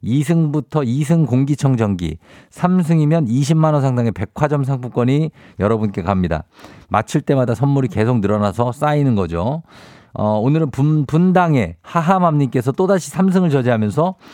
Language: Korean